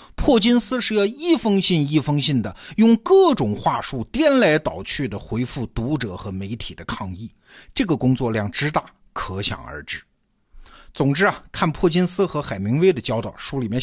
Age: 50-69